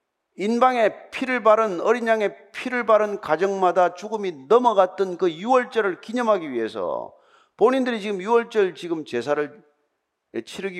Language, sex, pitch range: Korean, male, 165-235 Hz